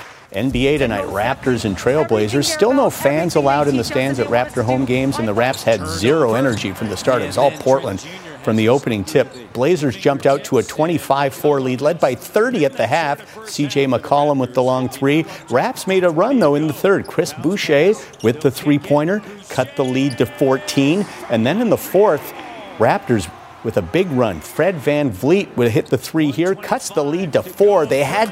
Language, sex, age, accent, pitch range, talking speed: English, male, 50-69, American, 115-150 Hz, 200 wpm